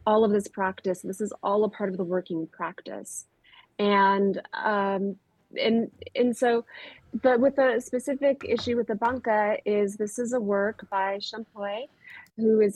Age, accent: 30-49, American